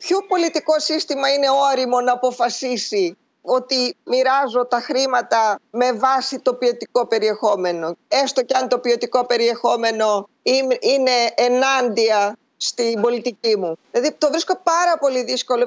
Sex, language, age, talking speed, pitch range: female, Greek, 20-39, 125 wpm, 230-290 Hz